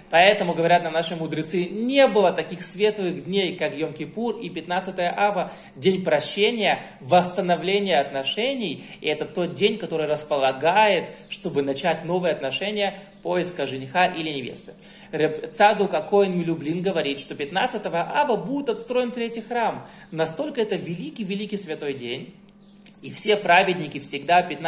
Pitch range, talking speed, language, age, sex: 155-200 Hz, 130 wpm, Russian, 20-39, male